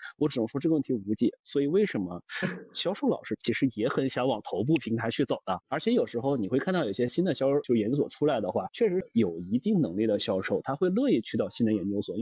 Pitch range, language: 110-165 Hz, Chinese